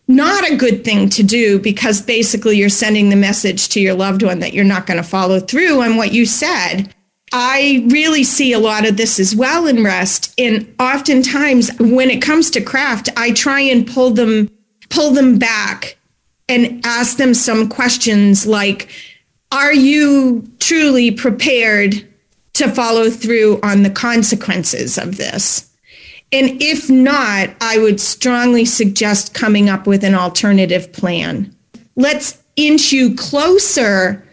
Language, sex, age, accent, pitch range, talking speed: English, female, 40-59, American, 205-265 Hz, 155 wpm